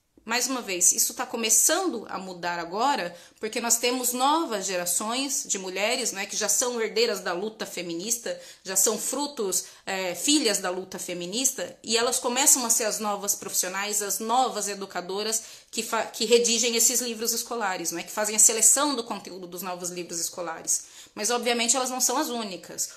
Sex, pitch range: female, 200-245 Hz